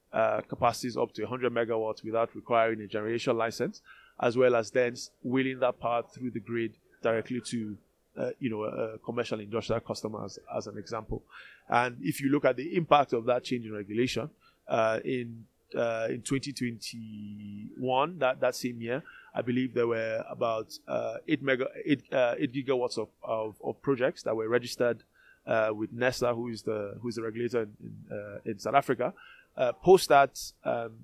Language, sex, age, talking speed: English, male, 20-39, 180 wpm